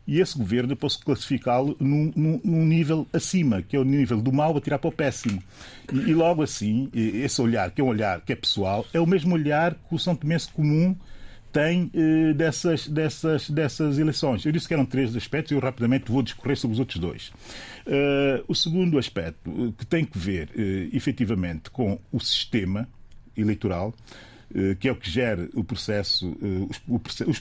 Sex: male